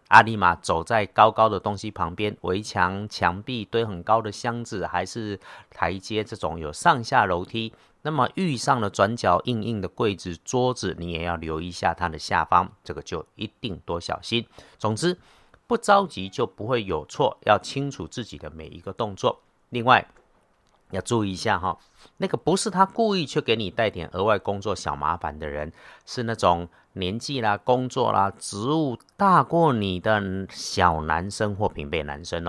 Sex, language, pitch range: male, Chinese, 90-125 Hz